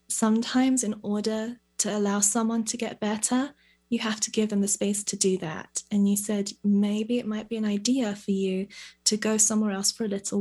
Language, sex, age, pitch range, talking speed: English, female, 20-39, 185-210 Hz, 215 wpm